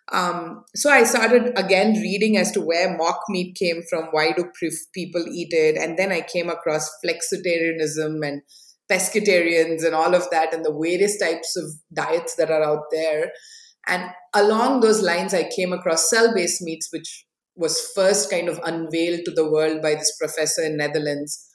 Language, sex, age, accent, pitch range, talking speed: Hindi, female, 20-39, native, 160-210 Hz, 180 wpm